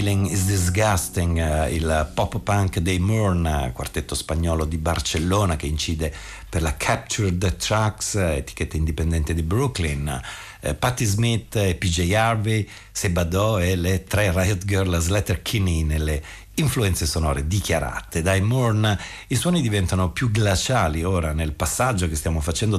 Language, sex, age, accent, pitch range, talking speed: Italian, male, 50-69, native, 85-105 Hz, 145 wpm